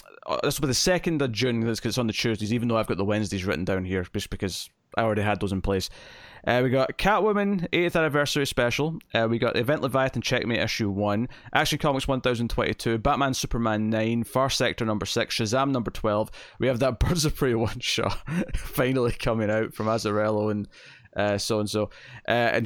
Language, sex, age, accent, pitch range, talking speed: English, male, 20-39, British, 105-130 Hz, 200 wpm